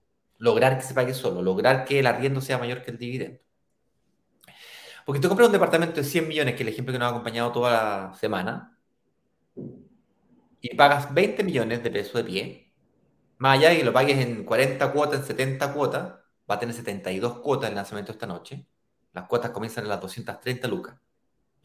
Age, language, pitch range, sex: 30-49, Spanish, 115-155 Hz, male